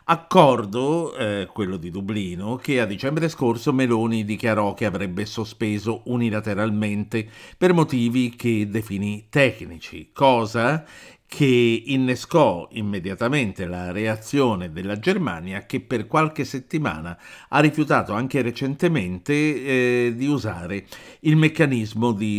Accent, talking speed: native, 115 wpm